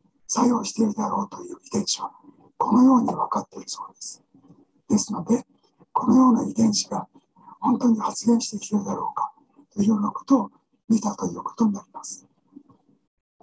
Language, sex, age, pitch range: Japanese, male, 60-79, 215-260 Hz